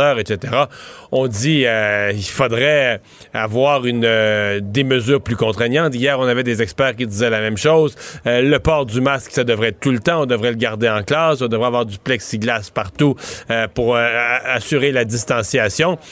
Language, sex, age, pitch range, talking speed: French, male, 40-59, 125-160 Hz, 195 wpm